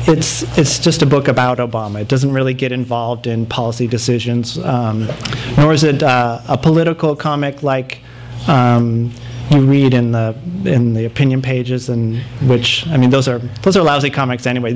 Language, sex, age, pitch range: English, male, 30-49, 120-135 Hz